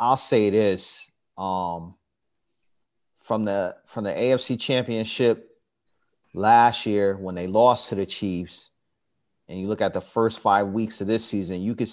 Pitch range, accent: 100-120 Hz, American